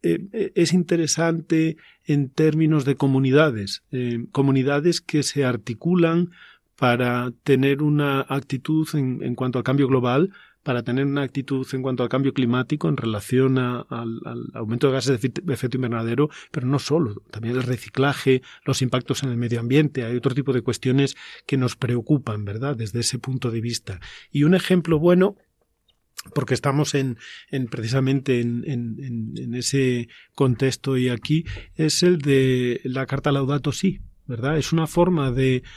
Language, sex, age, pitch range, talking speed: Spanish, male, 40-59, 125-150 Hz, 165 wpm